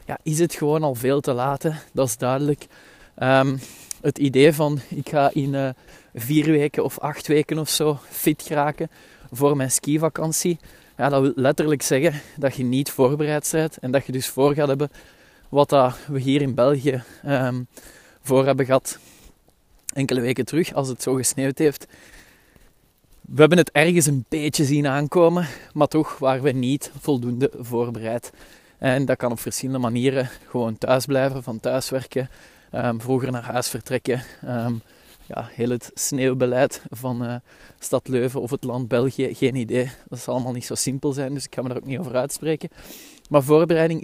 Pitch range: 125-150 Hz